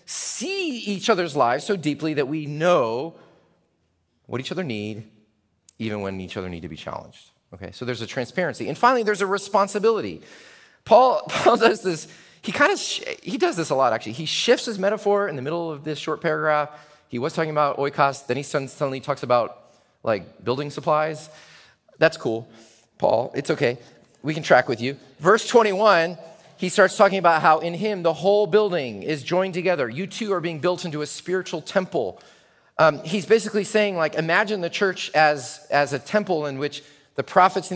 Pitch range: 145-185 Hz